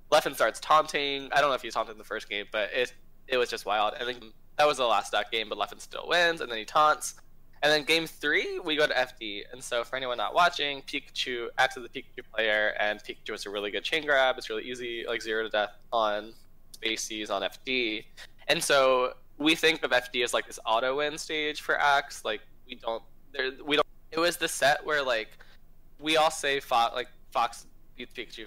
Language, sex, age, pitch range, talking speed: English, male, 10-29, 115-155 Hz, 225 wpm